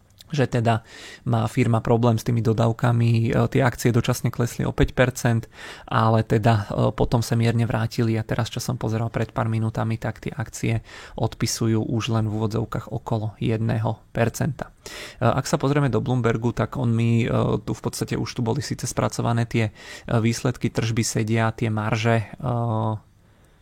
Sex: male